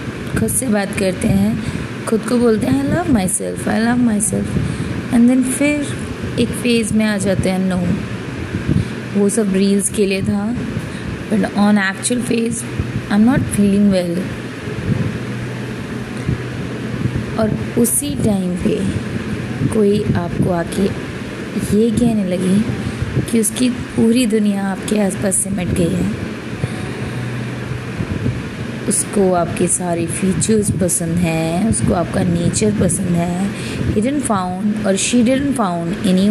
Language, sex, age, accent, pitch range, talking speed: Hindi, female, 20-39, native, 190-230 Hz, 125 wpm